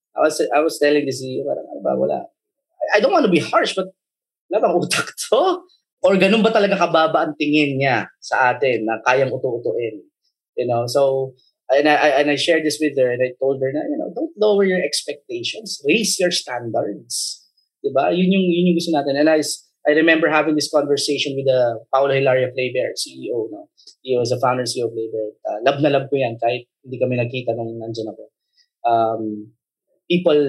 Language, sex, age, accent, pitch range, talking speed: Filipino, male, 20-39, native, 125-180 Hz, 195 wpm